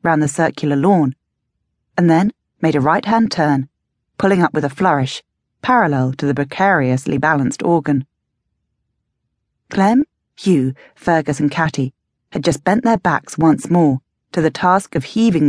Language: English